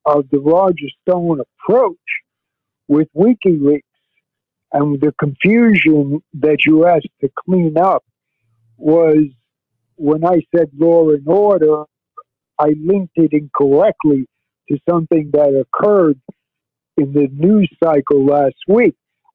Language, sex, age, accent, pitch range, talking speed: English, male, 60-79, American, 145-180 Hz, 115 wpm